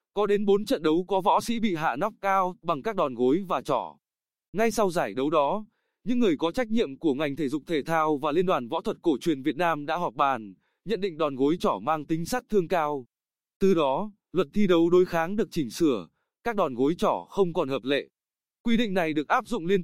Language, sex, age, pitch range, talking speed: Vietnamese, male, 20-39, 160-210 Hz, 245 wpm